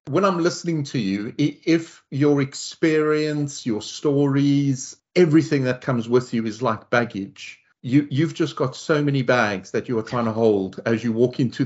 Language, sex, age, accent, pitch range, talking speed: English, male, 40-59, British, 105-135 Hz, 180 wpm